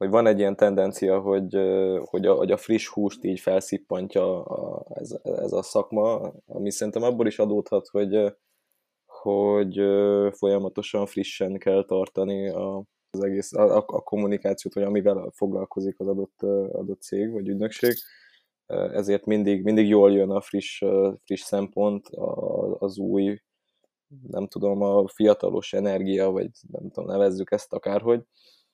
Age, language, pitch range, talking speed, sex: 20-39, Hungarian, 95-105 Hz, 140 wpm, male